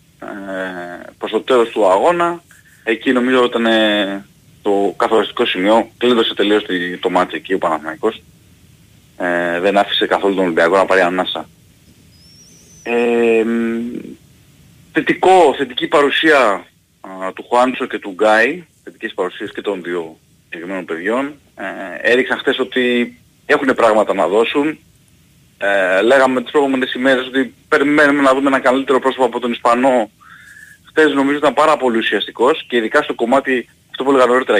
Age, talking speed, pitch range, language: 30-49, 135 wpm, 110-140 Hz, Greek